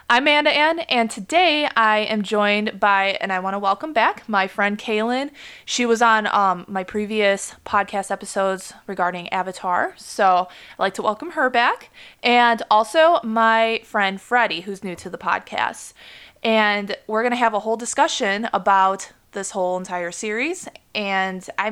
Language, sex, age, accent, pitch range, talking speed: English, female, 20-39, American, 190-235 Hz, 165 wpm